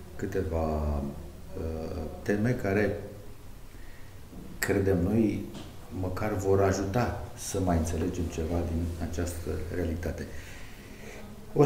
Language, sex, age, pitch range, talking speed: Romanian, male, 50-69, 90-115 Hz, 80 wpm